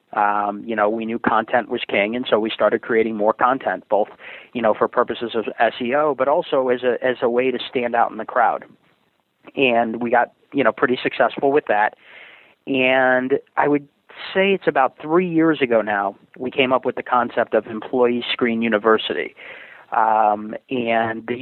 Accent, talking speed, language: American, 190 wpm, English